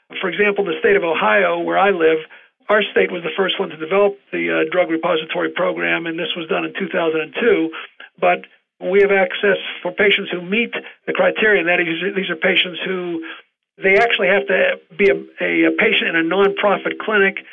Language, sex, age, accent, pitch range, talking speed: English, male, 50-69, American, 175-200 Hz, 195 wpm